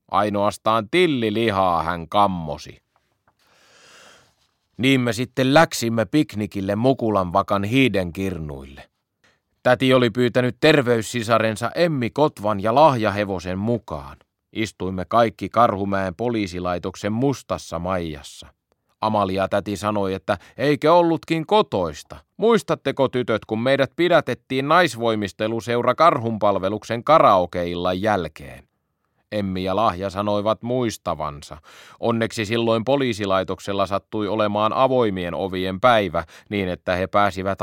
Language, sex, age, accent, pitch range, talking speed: Finnish, male, 30-49, native, 95-120 Hz, 95 wpm